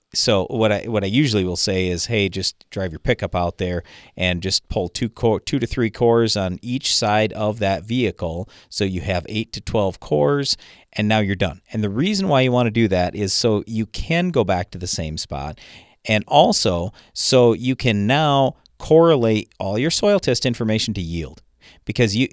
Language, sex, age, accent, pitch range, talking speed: English, male, 40-59, American, 95-125 Hz, 205 wpm